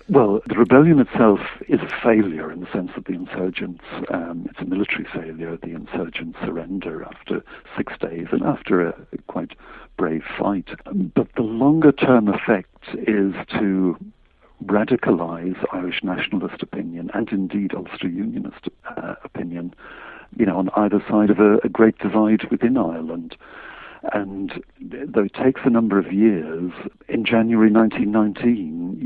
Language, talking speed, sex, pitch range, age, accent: English, 145 wpm, male, 90-110 Hz, 60-79, British